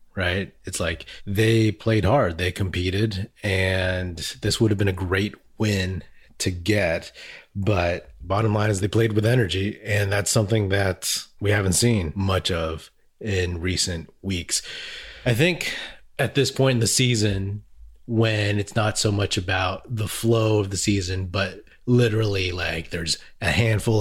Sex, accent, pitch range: male, American, 95-120 Hz